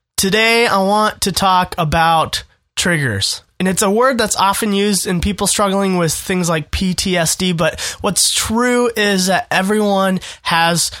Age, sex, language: 20-39, male, English